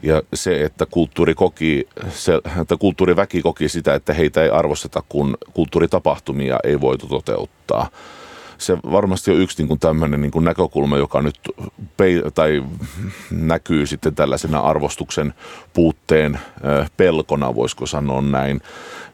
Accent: native